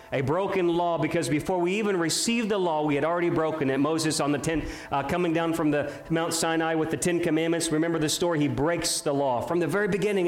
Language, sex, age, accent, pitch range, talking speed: English, male, 40-59, American, 125-155 Hz, 240 wpm